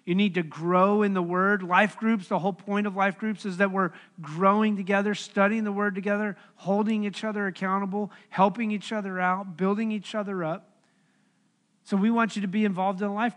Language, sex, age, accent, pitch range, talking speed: English, male, 40-59, American, 190-215 Hz, 205 wpm